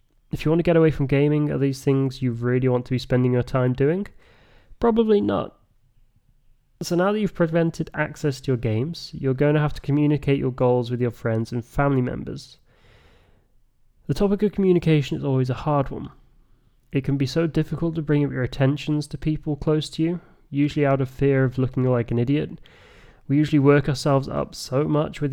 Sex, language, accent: male, English, British